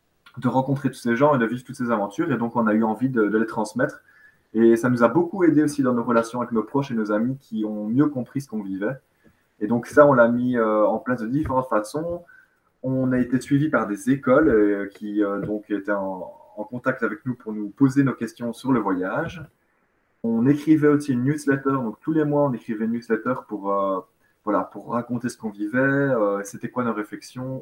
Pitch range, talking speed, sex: 105-130 Hz, 230 wpm, male